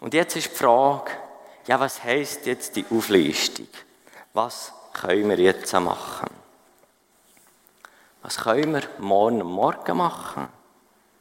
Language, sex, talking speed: German, male, 125 wpm